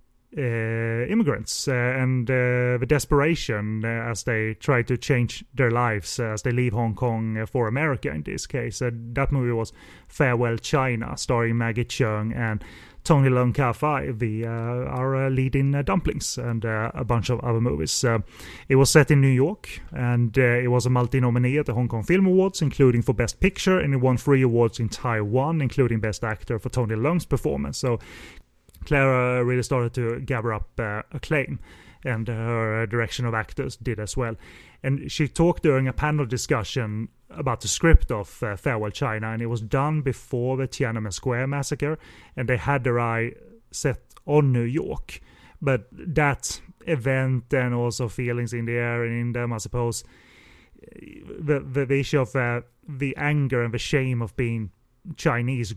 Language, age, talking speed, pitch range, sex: English, 30-49, 180 wpm, 115-135 Hz, male